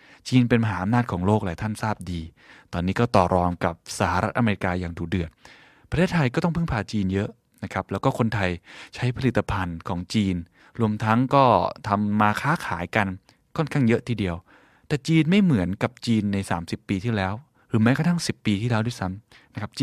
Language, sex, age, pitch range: Thai, male, 20-39, 95-125 Hz